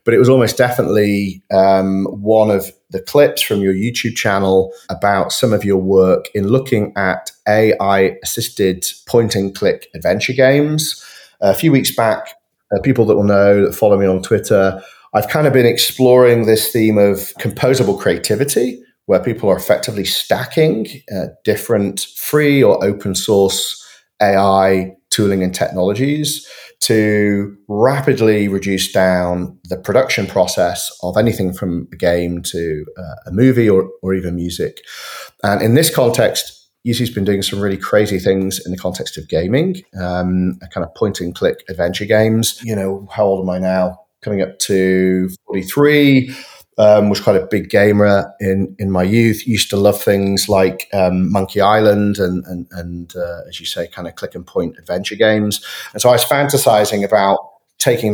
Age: 30-49